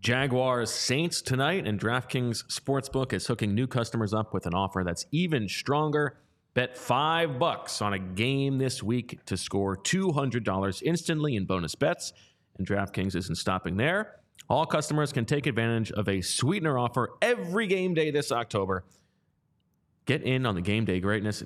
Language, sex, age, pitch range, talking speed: English, male, 30-49, 100-140 Hz, 160 wpm